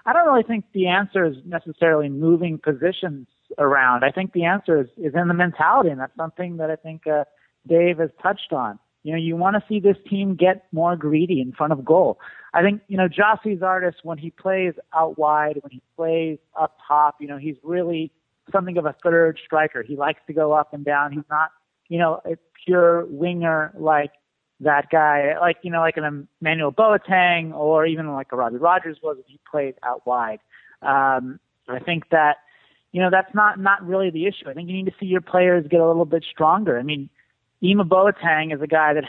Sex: male